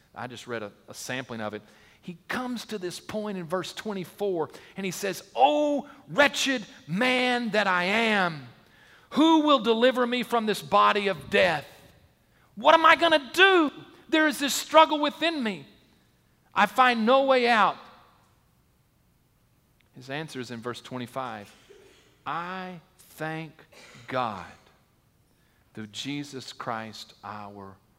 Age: 40-59